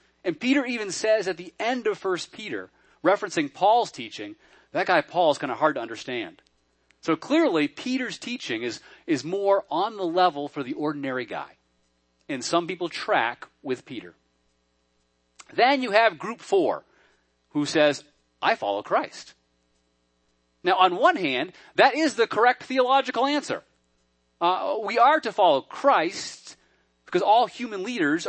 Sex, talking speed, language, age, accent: male, 155 wpm, English, 30-49, American